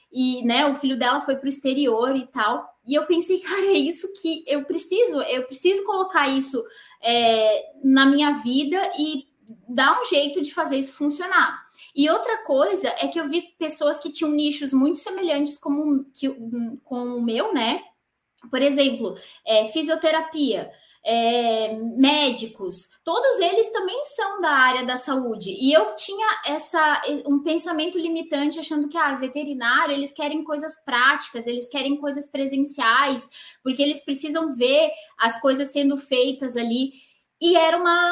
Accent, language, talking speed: Brazilian, Portuguese, 155 wpm